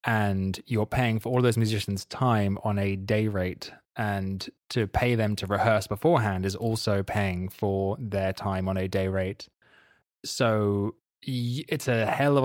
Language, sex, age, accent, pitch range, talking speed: English, male, 20-39, British, 100-120 Hz, 165 wpm